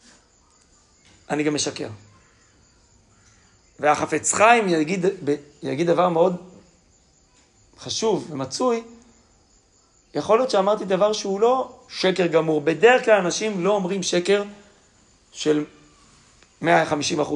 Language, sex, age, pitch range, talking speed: Hebrew, male, 40-59, 150-205 Hz, 95 wpm